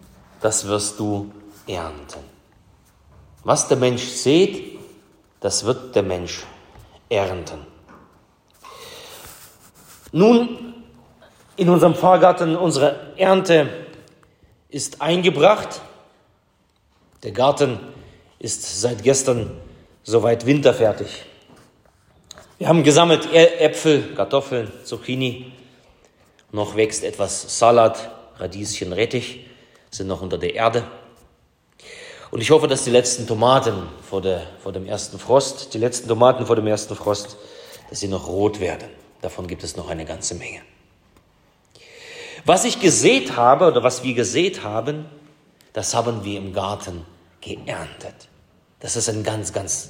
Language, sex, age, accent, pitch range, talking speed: German, male, 40-59, German, 105-150 Hz, 115 wpm